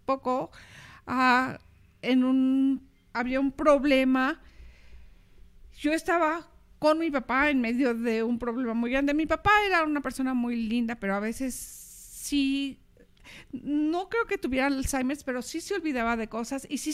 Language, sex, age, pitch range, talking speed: Spanish, female, 50-69, 235-305 Hz, 150 wpm